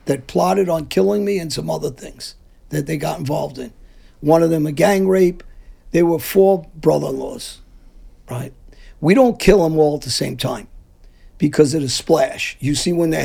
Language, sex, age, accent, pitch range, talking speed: English, male, 50-69, American, 145-180 Hz, 190 wpm